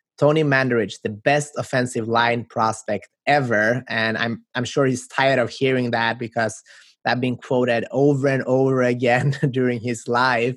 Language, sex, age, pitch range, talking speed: English, male, 20-39, 115-135 Hz, 160 wpm